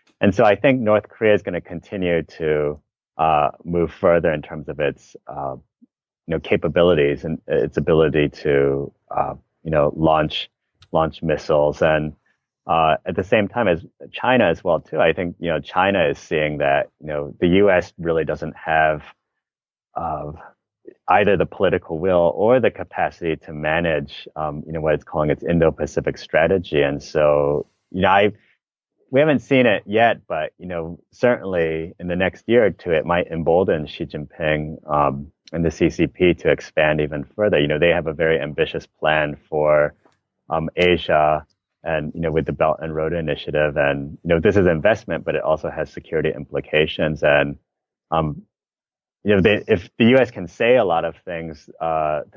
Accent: American